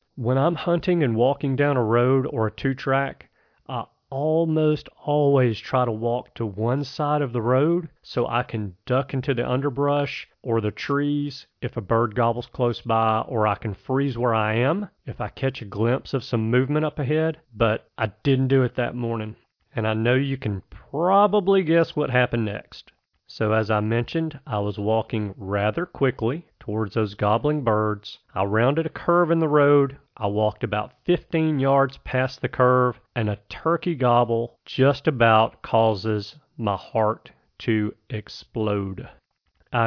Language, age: English, 40-59